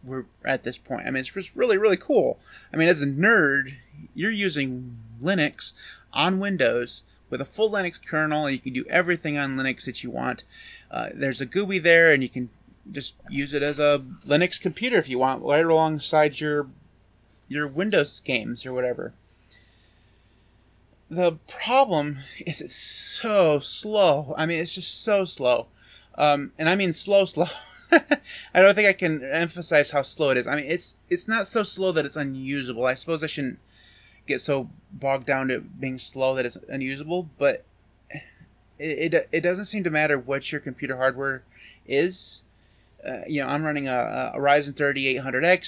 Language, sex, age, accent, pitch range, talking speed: English, male, 30-49, American, 130-175 Hz, 175 wpm